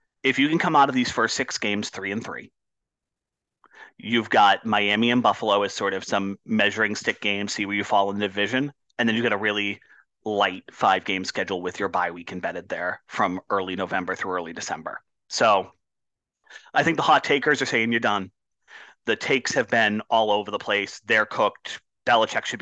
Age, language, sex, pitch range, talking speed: 30-49, English, male, 100-120 Hz, 200 wpm